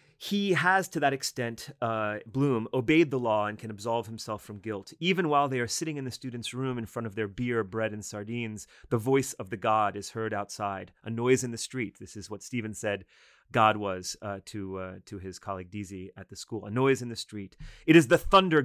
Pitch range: 105-135 Hz